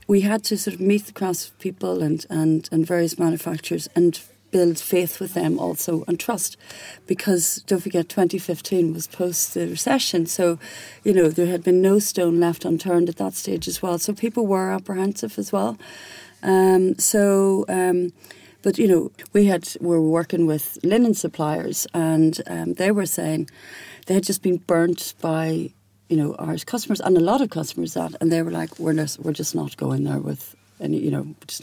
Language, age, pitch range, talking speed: English, 40-59, 160-190 Hz, 195 wpm